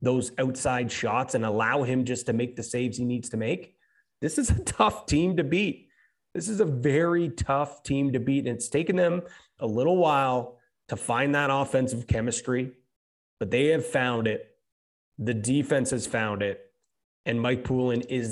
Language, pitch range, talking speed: English, 120-145 Hz, 185 wpm